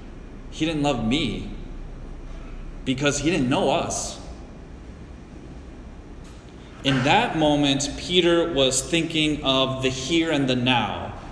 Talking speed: 110 wpm